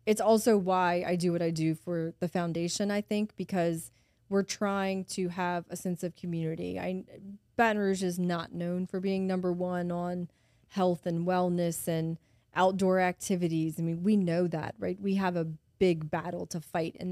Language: English